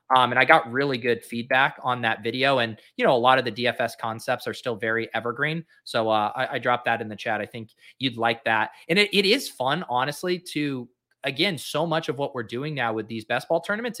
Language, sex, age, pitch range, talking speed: English, male, 20-39, 120-150 Hz, 245 wpm